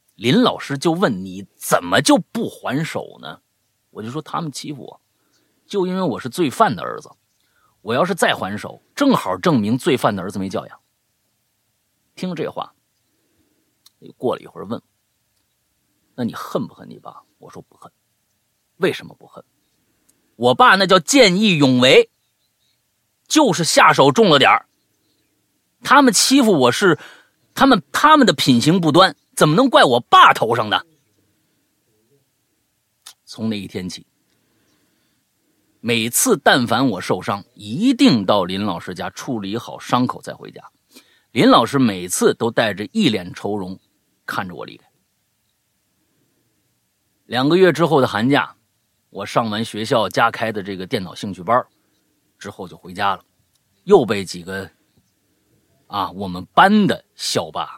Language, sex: Chinese, male